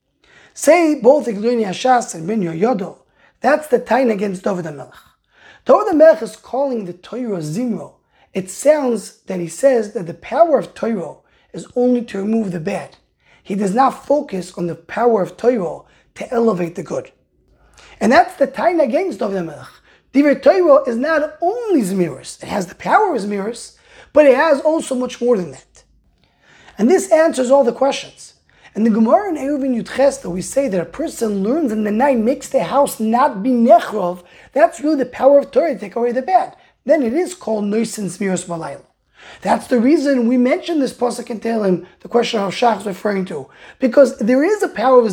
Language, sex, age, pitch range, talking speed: English, male, 20-39, 210-285 Hz, 190 wpm